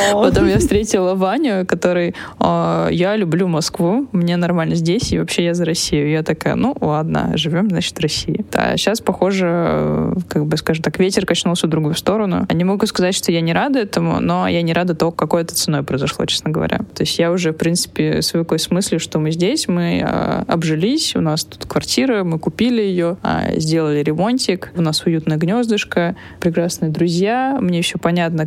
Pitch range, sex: 160-190 Hz, female